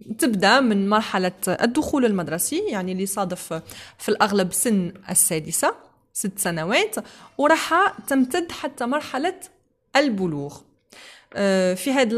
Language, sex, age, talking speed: Arabic, female, 20-39, 105 wpm